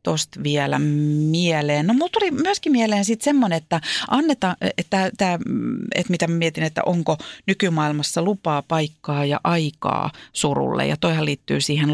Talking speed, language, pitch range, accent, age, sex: 155 wpm, Finnish, 145-195 Hz, native, 40-59, female